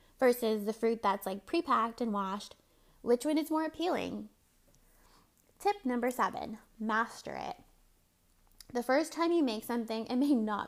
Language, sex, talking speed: English, female, 150 wpm